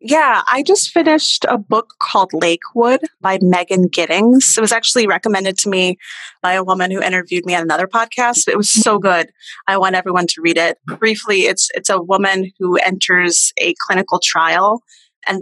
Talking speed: 185 wpm